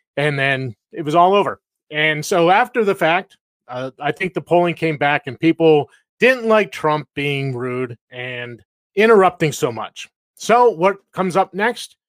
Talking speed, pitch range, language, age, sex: 170 wpm, 130-175 Hz, English, 30-49, male